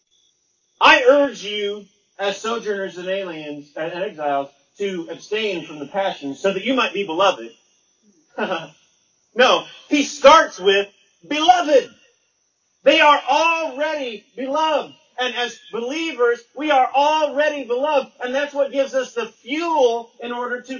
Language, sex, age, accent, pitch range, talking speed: English, male, 40-59, American, 200-275 Hz, 135 wpm